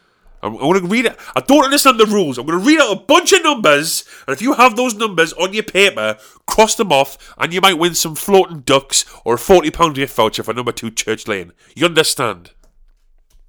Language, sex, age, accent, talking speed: English, male, 30-49, British, 225 wpm